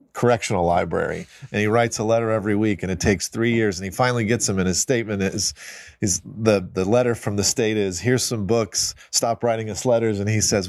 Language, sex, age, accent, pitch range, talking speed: English, male, 40-59, American, 100-120 Hz, 230 wpm